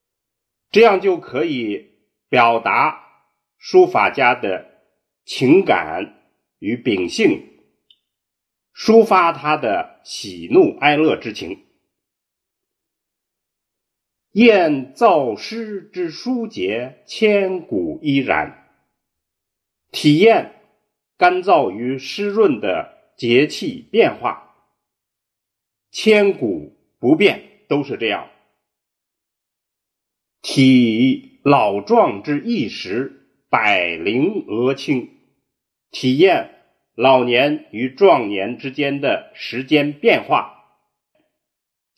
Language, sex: Chinese, male